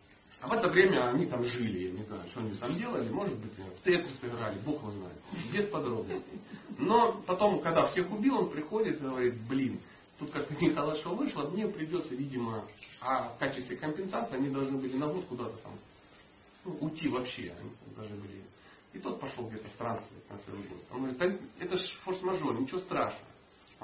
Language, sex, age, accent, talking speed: Russian, male, 40-59, native, 185 wpm